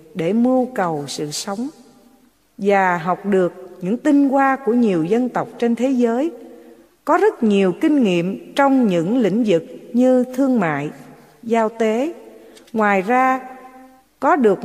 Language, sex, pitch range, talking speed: English, female, 185-270 Hz, 150 wpm